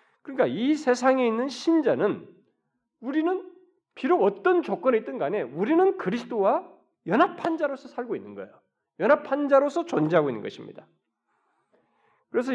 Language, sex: Korean, male